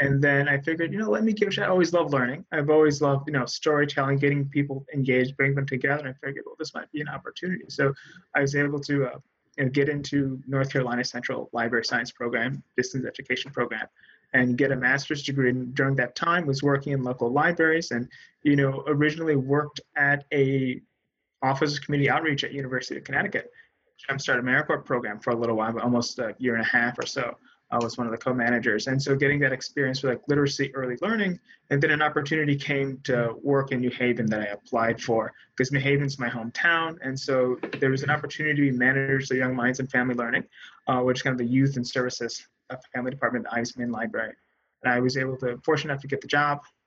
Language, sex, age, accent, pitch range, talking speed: English, male, 20-39, American, 125-145 Hz, 225 wpm